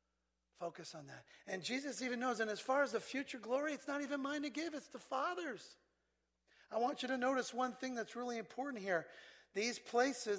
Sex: male